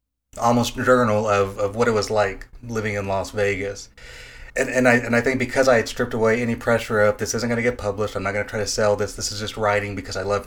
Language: English